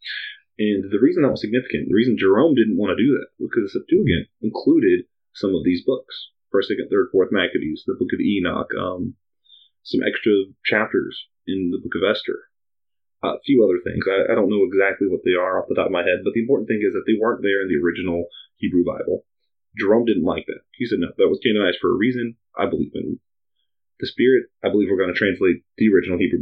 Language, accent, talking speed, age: English, American, 225 wpm, 30-49